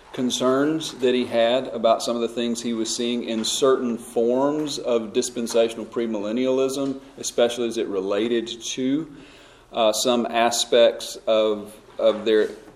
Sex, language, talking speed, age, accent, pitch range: male, English, 135 wpm, 40-59, American, 110-130 Hz